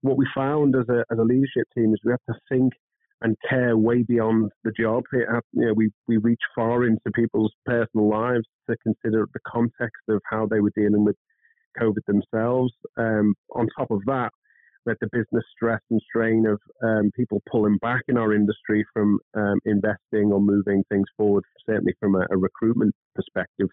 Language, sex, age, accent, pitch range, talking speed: English, male, 30-49, British, 105-125 Hz, 190 wpm